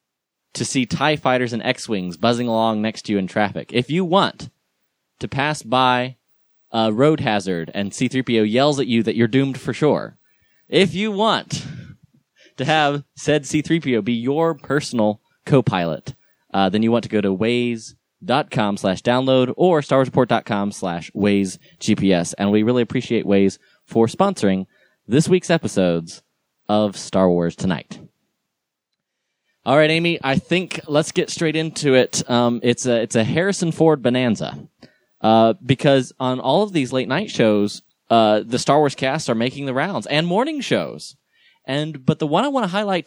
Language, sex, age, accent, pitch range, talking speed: English, male, 20-39, American, 110-155 Hz, 165 wpm